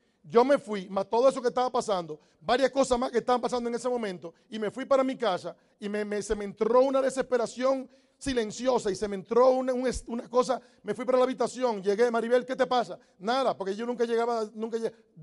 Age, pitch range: 40-59, 210-245 Hz